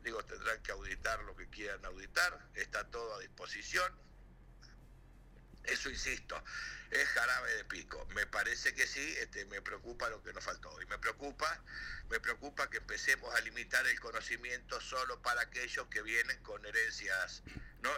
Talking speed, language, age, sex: 160 wpm, Spanish, 60-79, male